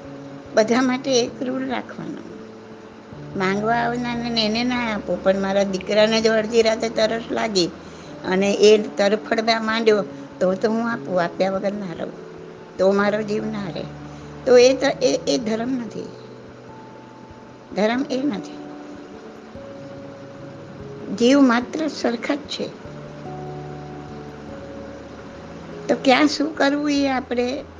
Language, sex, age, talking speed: Gujarati, female, 60-79, 35 wpm